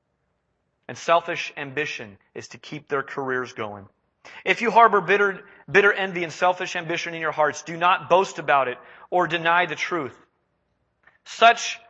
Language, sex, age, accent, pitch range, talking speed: English, male, 30-49, American, 155-210 Hz, 155 wpm